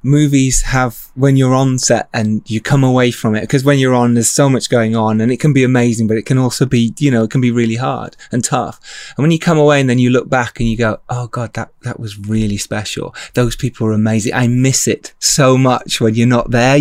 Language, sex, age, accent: English, male, 20-39, British